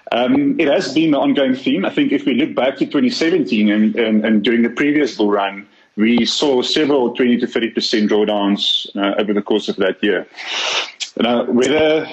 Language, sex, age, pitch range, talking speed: English, male, 30-49, 115-175 Hz, 195 wpm